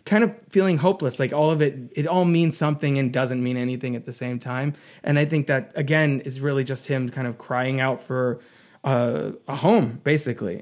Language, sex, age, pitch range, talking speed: English, male, 20-39, 130-155 Hz, 215 wpm